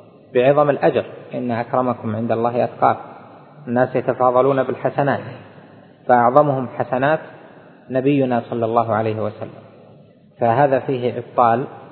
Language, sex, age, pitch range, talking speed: Arabic, male, 20-39, 115-130 Hz, 100 wpm